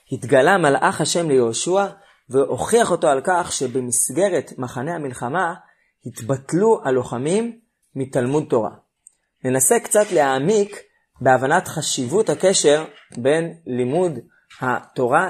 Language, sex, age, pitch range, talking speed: Hebrew, male, 30-49, 130-180 Hz, 95 wpm